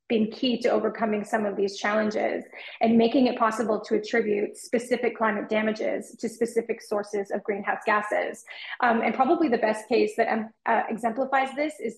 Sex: female